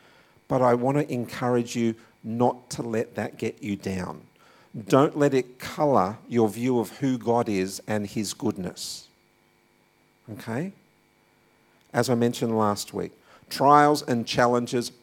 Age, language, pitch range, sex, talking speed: 50-69, English, 110-140 Hz, male, 140 wpm